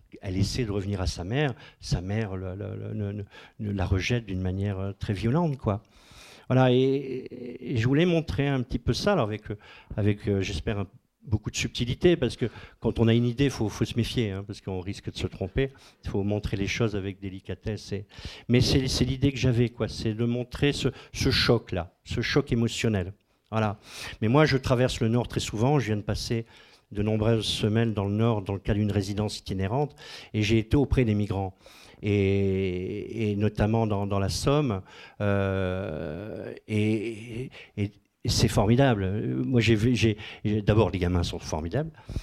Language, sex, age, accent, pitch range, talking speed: French, male, 50-69, French, 100-120 Hz, 190 wpm